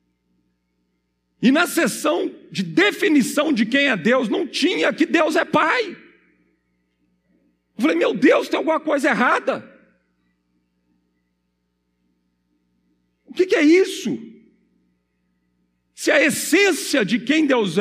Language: Portuguese